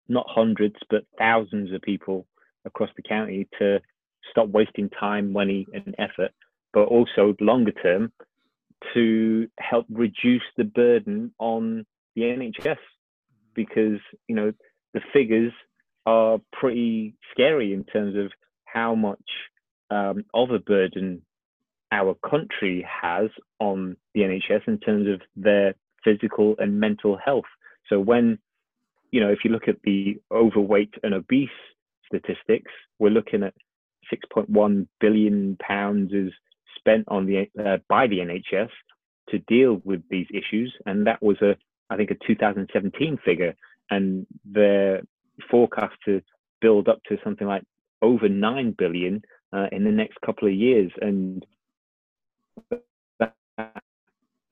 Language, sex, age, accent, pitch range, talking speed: English, male, 30-49, British, 100-115 Hz, 135 wpm